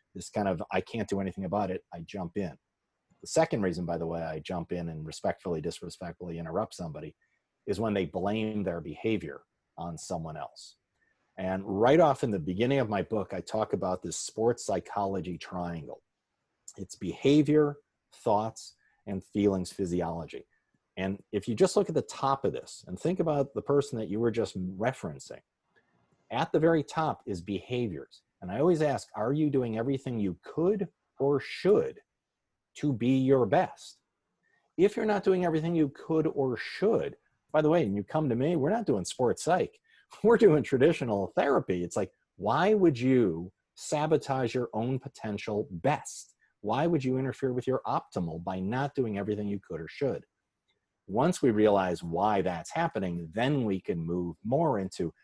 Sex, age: male, 40-59